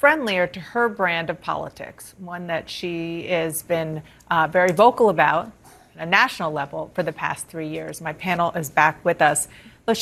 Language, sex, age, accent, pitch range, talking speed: English, female, 40-59, American, 160-190 Hz, 185 wpm